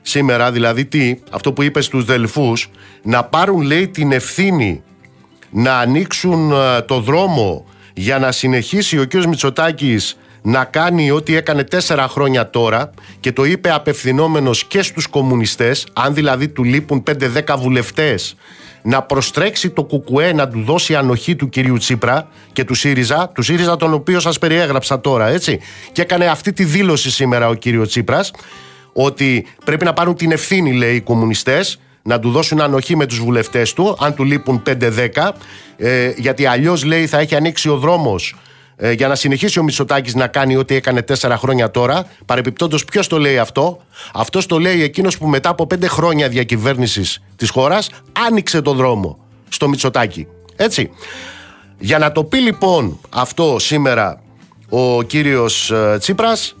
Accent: native